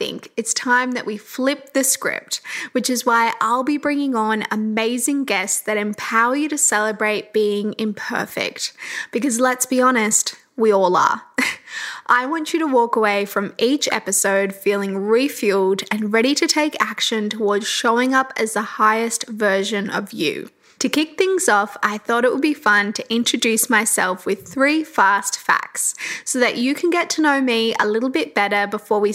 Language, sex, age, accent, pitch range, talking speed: English, female, 10-29, Australian, 210-265 Hz, 175 wpm